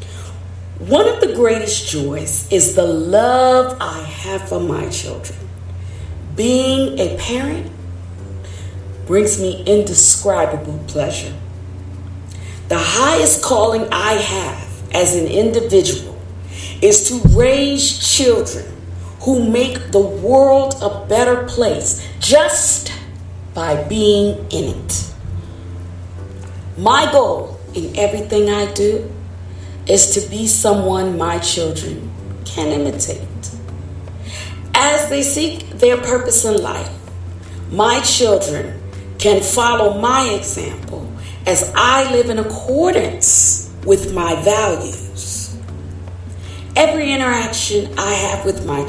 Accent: American